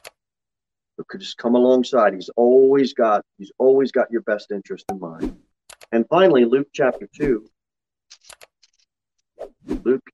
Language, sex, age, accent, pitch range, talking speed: English, male, 40-59, American, 105-145 Hz, 125 wpm